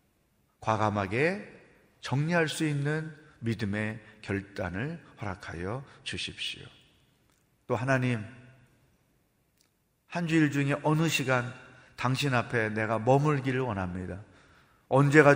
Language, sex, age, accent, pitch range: Korean, male, 40-59, native, 110-150 Hz